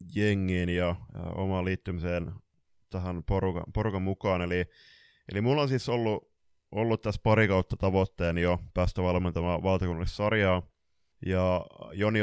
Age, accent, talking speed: 20-39, native, 130 wpm